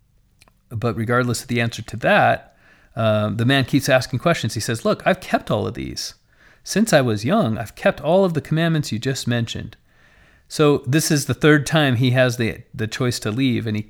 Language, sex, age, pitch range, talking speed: English, male, 40-59, 110-130 Hz, 210 wpm